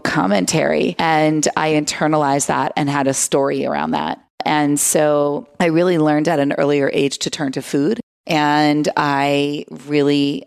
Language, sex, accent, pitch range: English, female, American, 140-160 Hz